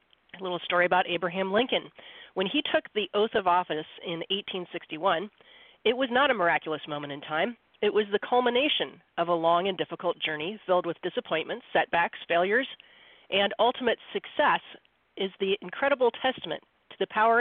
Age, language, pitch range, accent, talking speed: 40-59, English, 165-215 Hz, American, 160 wpm